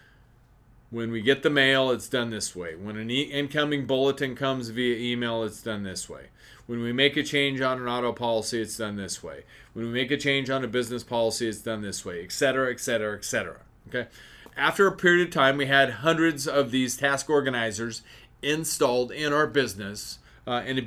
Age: 30-49